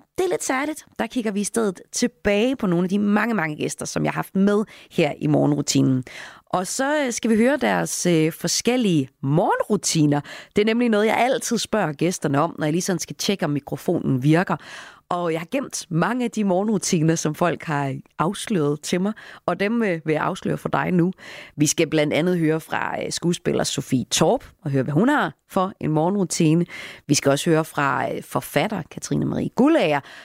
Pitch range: 150-205 Hz